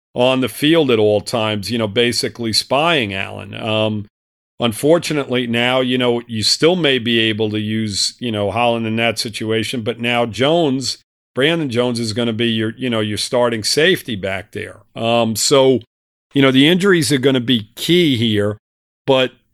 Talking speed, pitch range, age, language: 180 wpm, 110-140 Hz, 40-59, English